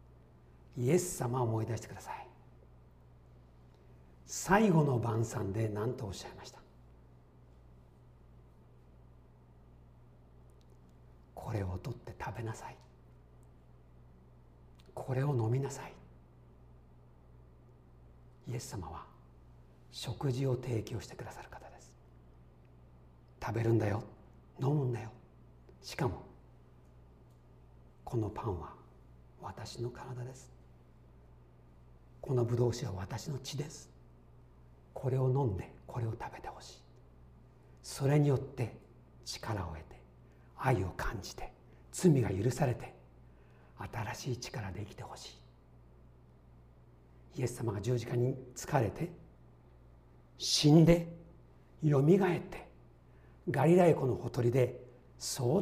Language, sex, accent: Japanese, male, native